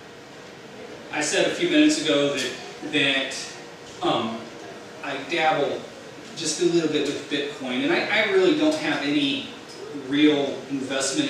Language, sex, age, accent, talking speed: English, male, 30-49, American, 140 wpm